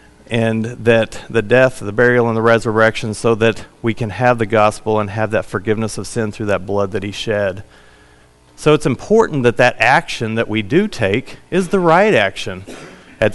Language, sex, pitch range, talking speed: English, male, 110-130 Hz, 195 wpm